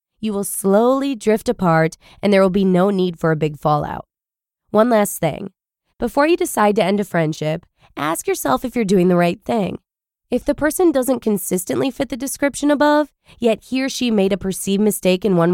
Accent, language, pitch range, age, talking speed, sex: American, English, 180-265 Hz, 20-39, 200 wpm, female